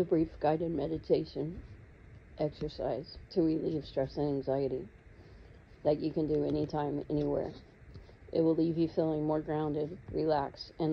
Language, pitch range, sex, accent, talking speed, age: English, 145-160 Hz, female, American, 135 wpm, 40-59